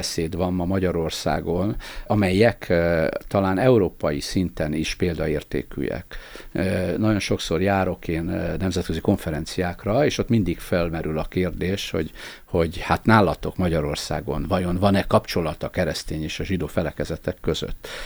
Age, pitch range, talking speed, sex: 50-69, 80-95 Hz, 120 wpm, male